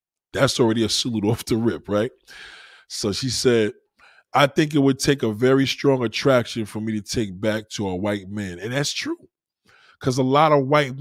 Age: 20-39